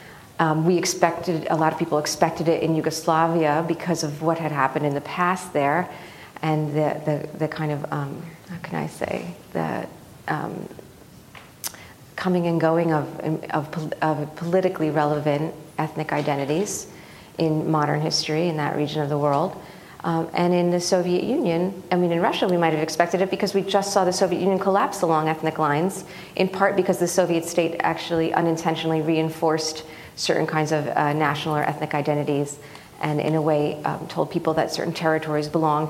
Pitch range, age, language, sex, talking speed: 150-170 Hz, 40-59, English, female, 175 wpm